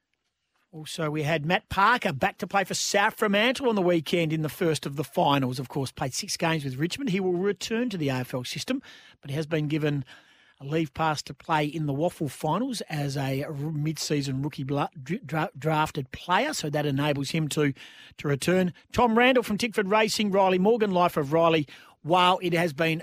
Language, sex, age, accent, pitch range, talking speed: English, male, 40-59, Australian, 150-205 Hz, 195 wpm